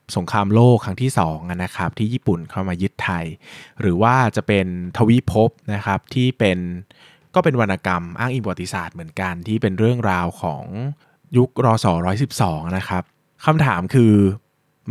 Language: Thai